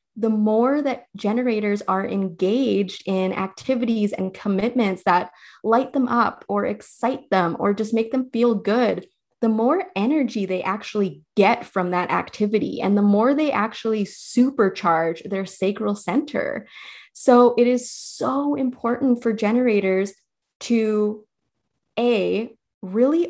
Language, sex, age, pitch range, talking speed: English, female, 20-39, 200-245 Hz, 130 wpm